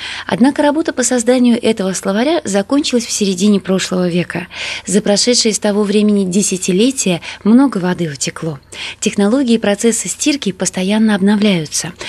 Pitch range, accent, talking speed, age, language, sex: 190-245 Hz, native, 130 wpm, 20-39, Russian, female